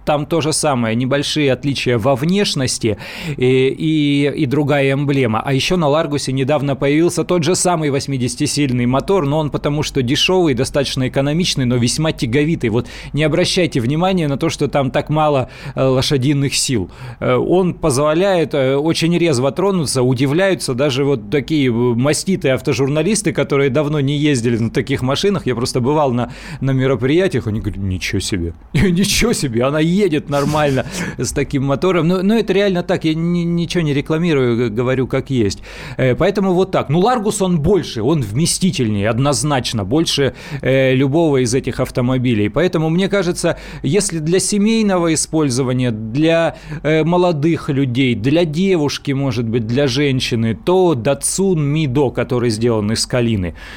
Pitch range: 125-165 Hz